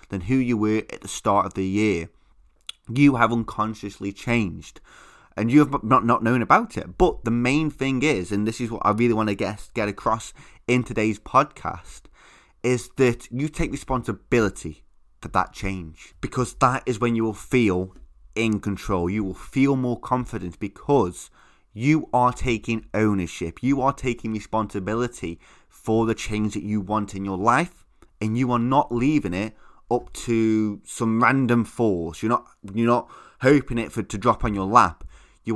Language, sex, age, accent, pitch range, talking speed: English, male, 20-39, British, 100-125 Hz, 175 wpm